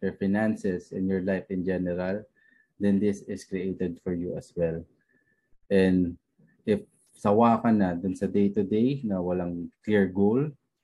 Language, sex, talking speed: English, male, 160 wpm